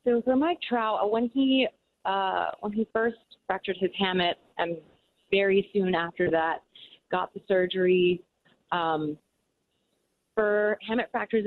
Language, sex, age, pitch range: English, female, 30-49, 165-210 Hz